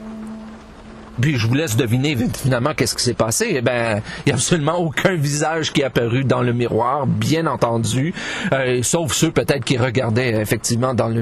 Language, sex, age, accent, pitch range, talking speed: French, male, 40-59, Canadian, 115-155 Hz, 180 wpm